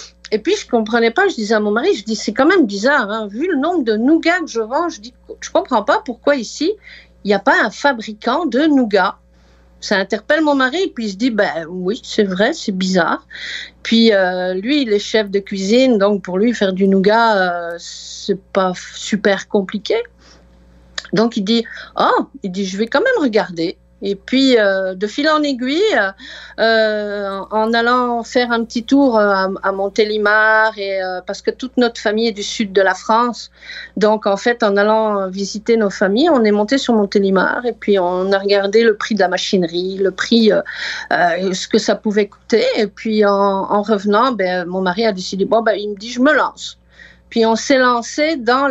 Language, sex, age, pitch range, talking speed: French, female, 50-69, 195-250 Hz, 210 wpm